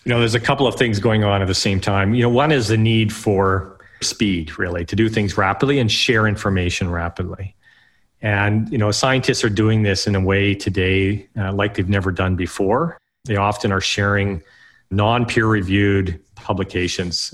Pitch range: 95-110 Hz